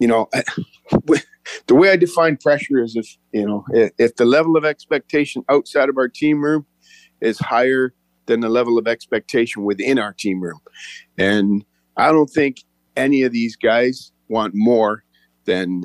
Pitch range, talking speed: 100-130 Hz, 165 wpm